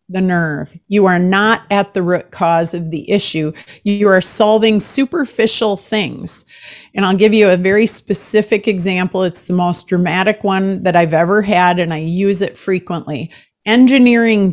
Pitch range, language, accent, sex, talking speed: 175-220 Hz, English, American, female, 165 wpm